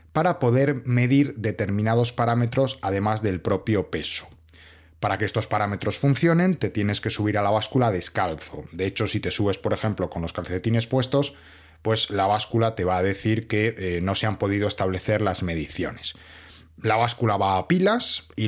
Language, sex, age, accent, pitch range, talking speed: Spanish, male, 30-49, Spanish, 90-125 Hz, 180 wpm